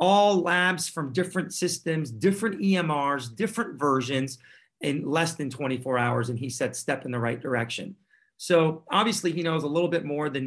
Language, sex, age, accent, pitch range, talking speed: English, male, 40-59, American, 135-170 Hz, 180 wpm